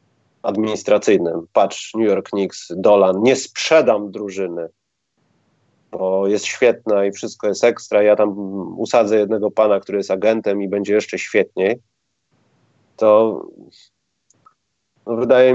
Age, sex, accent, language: 30-49, male, native, Polish